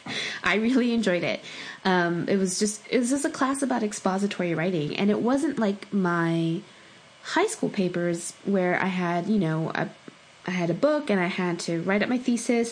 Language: English